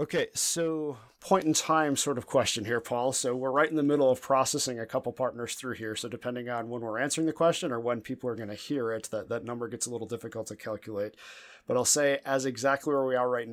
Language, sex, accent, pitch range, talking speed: English, male, American, 110-125 Hz, 255 wpm